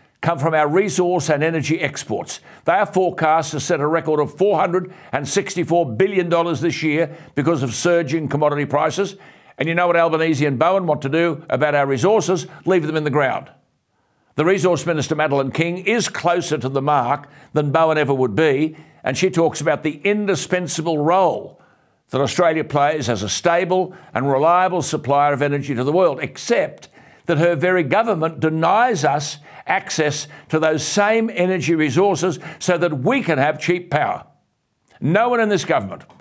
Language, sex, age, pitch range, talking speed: English, male, 60-79, 150-175 Hz, 170 wpm